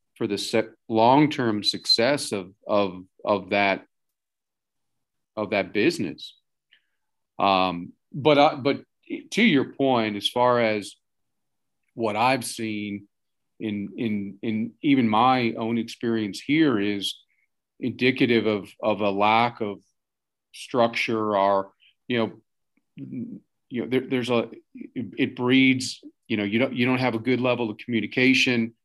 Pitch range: 110-130 Hz